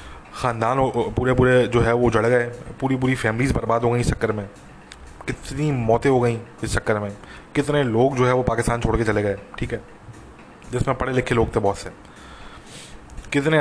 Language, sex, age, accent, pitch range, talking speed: English, male, 20-39, Indian, 115-130 Hz, 185 wpm